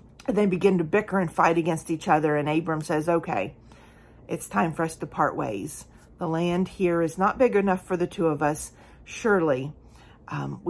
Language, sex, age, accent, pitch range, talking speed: English, female, 40-59, American, 160-200 Hz, 195 wpm